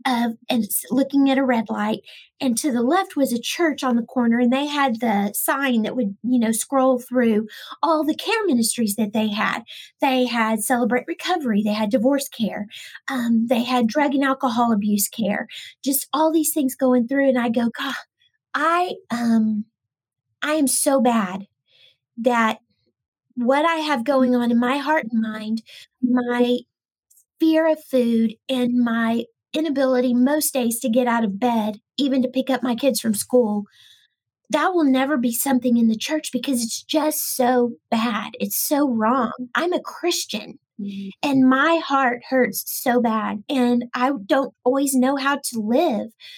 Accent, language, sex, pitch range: American, English, female, 230-275 Hz